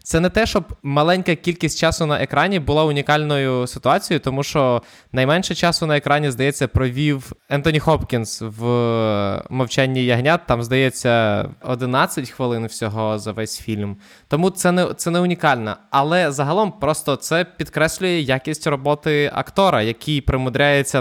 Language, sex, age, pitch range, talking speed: Ukrainian, male, 20-39, 125-165 Hz, 140 wpm